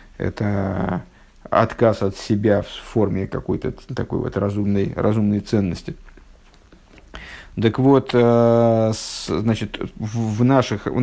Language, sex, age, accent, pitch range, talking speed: Russian, male, 50-69, native, 105-130 Hz, 100 wpm